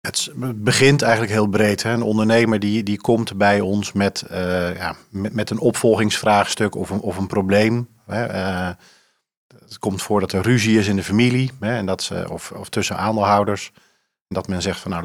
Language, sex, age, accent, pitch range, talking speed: Dutch, male, 40-59, Dutch, 95-110 Hz, 170 wpm